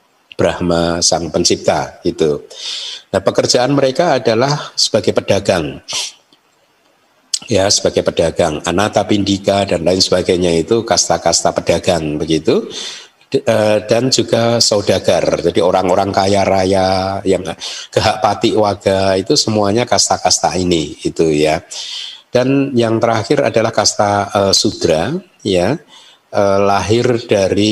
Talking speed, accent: 100 wpm, native